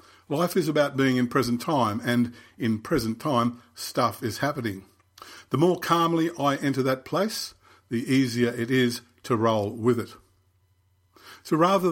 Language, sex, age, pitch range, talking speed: English, male, 50-69, 110-140 Hz, 155 wpm